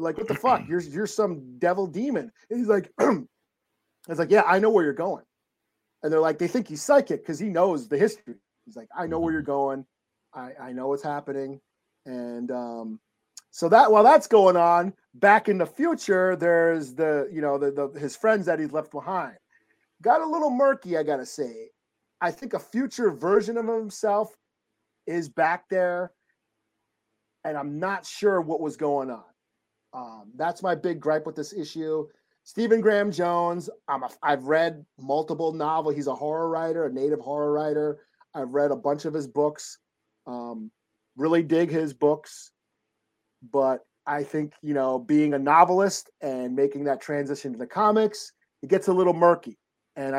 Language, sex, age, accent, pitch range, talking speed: English, male, 40-59, American, 140-190 Hz, 180 wpm